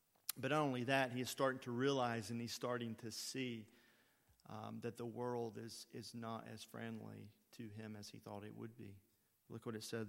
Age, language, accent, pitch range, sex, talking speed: 40-59, English, American, 105-120 Hz, male, 210 wpm